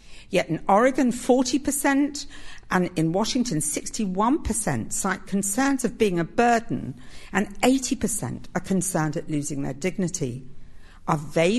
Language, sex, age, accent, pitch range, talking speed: English, female, 50-69, British, 150-225 Hz, 125 wpm